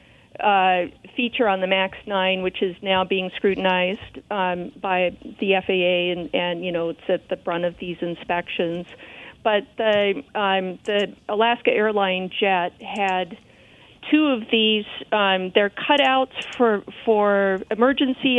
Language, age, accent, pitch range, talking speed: English, 50-69, American, 180-215 Hz, 140 wpm